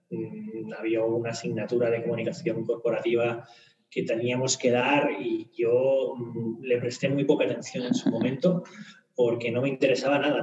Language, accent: Spanish, Spanish